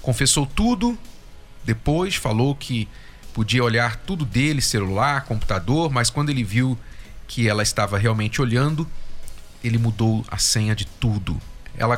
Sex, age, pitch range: male, 40-59, 115-155 Hz